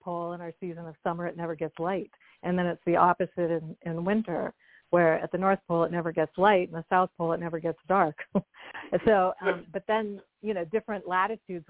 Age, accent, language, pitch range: 50-69, American, English, 170-195 Hz